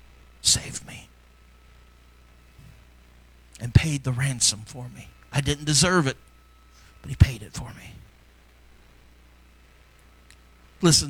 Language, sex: English, male